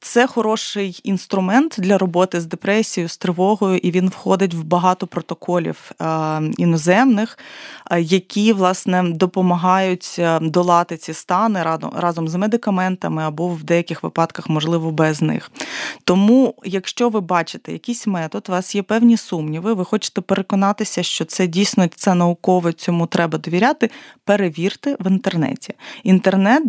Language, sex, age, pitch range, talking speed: Ukrainian, female, 20-39, 170-210 Hz, 130 wpm